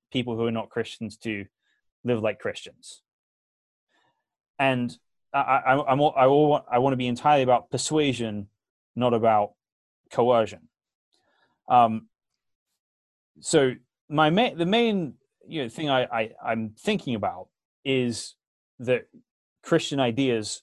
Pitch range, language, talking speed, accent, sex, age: 110-140 Hz, English, 130 wpm, British, male, 20-39